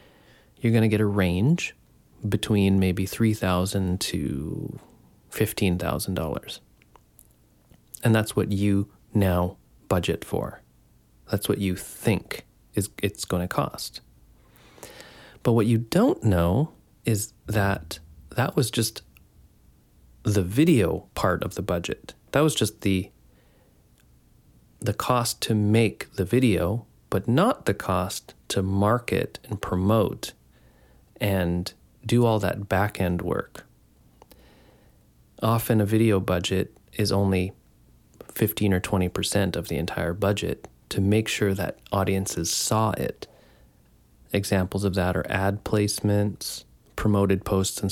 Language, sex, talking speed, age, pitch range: English, male, 120 wpm, 30-49, 90-110 Hz